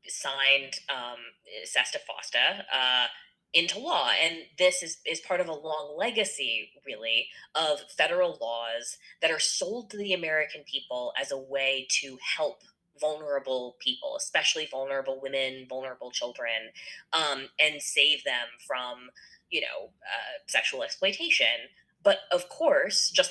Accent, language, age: American, English, 20-39